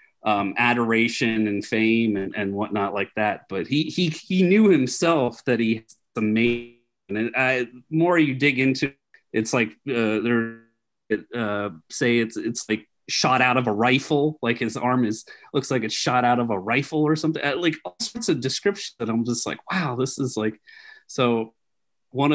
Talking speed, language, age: 185 wpm, English, 30-49